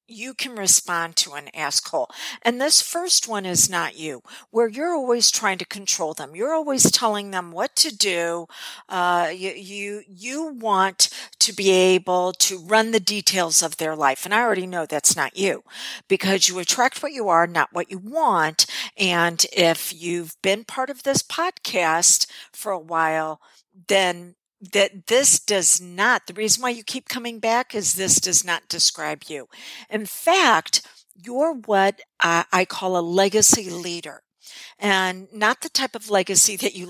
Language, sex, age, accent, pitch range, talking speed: English, female, 50-69, American, 180-230 Hz, 170 wpm